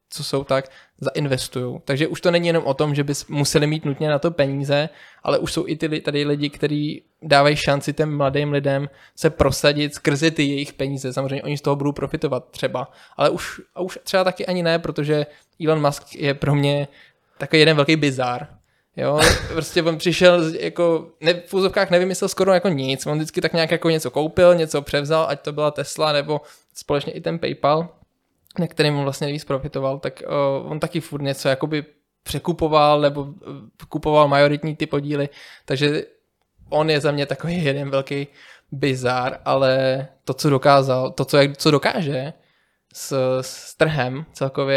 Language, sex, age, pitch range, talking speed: Czech, male, 20-39, 135-155 Hz, 180 wpm